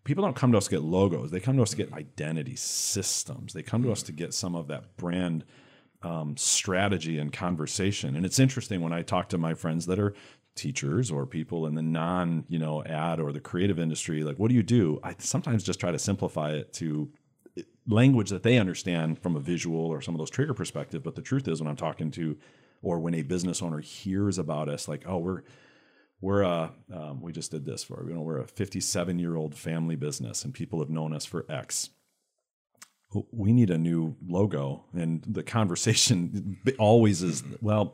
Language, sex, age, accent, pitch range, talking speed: English, male, 40-59, American, 80-100 Hz, 210 wpm